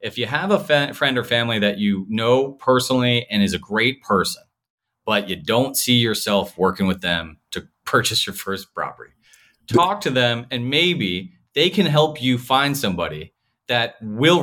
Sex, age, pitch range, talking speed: male, 30-49, 105-155 Hz, 180 wpm